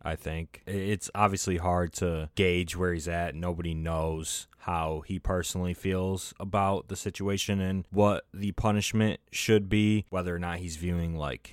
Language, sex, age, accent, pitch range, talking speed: English, male, 20-39, American, 85-100 Hz, 160 wpm